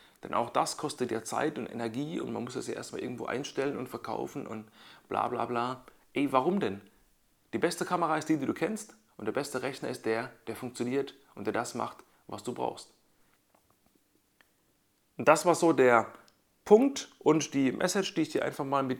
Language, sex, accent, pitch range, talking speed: German, male, German, 120-160 Hz, 200 wpm